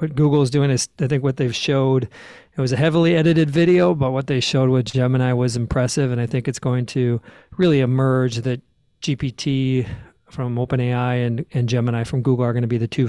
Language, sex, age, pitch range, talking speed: English, male, 40-59, 125-145 Hz, 210 wpm